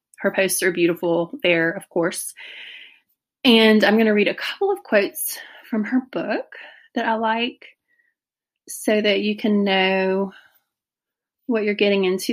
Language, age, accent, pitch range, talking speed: English, 30-49, American, 175-220 Hz, 150 wpm